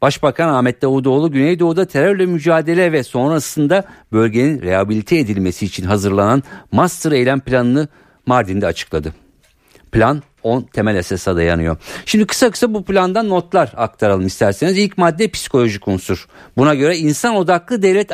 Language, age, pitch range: Turkish, 50-69, 105-160 Hz